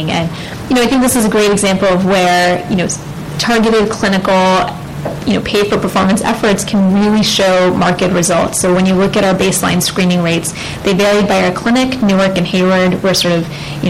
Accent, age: American, 10-29